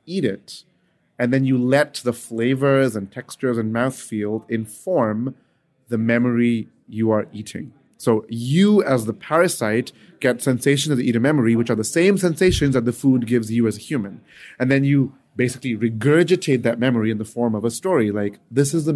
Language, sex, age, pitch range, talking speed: English, male, 30-49, 115-135 Hz, 185 wpm